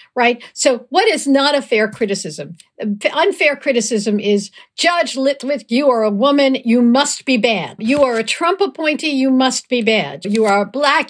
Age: 60-79